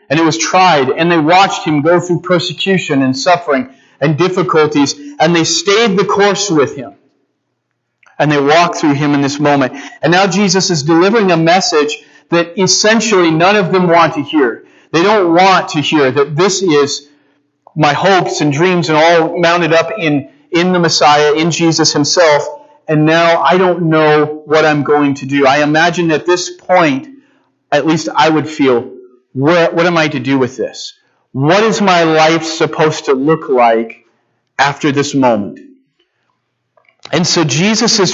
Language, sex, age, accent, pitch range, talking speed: English, male, 40-59, American, 140-180 Hz, 175 wpm